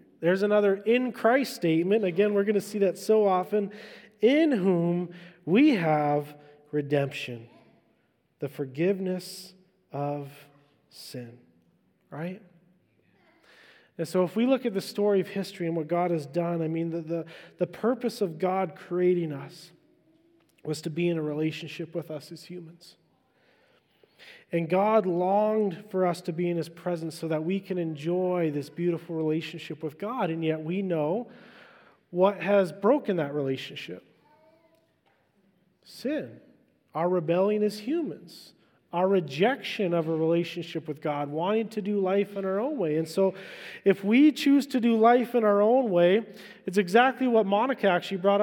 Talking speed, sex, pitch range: 155 wpm, male, 165-210 Hz